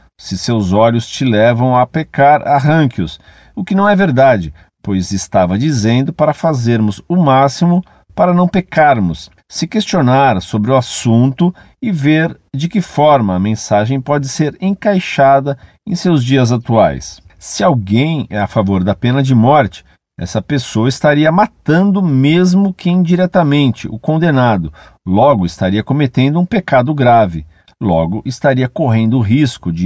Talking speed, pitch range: 145 wpm, 105-155 Hz